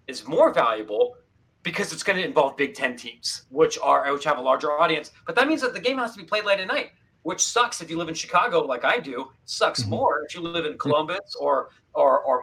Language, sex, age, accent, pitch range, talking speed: English, male, 40-59, American, 140-185 Hz, 250 wpm